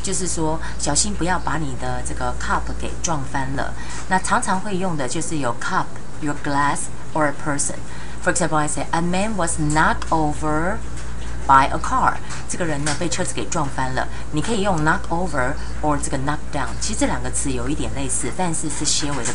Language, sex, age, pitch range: Chinese, female, 30-49, 130-160 Hz